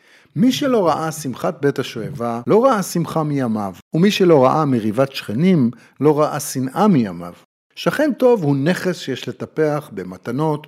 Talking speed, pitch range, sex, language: 145 wpm, 120-170 Hz, male, Hebrew